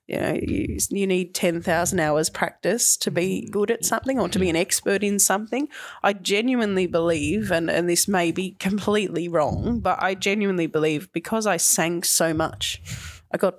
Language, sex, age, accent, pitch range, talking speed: English, female, 20-39, Australian, 170-200 Hz, 180 wpm